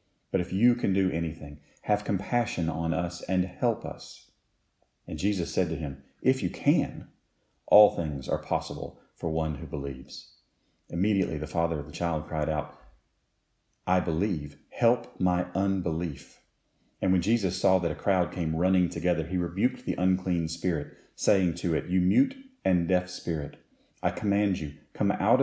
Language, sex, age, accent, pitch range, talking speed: English, male, 40-59, American, 80-95 Hz, 165 wpm